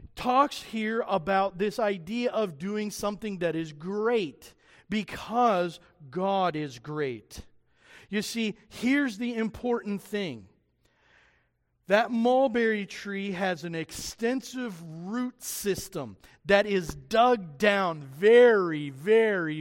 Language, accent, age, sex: English, American, 40-59, male